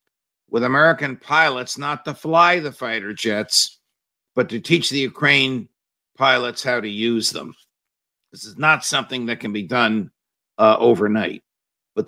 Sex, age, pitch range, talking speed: male, 50-69, 115-150 Hz, 150 wpm